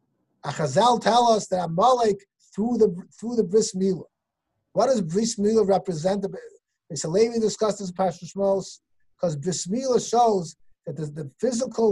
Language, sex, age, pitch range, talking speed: English, male, 50-69, 185-240 Hz, 135 wpm